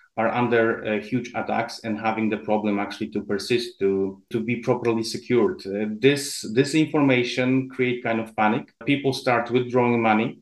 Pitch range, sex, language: 110-130 Hz, male, English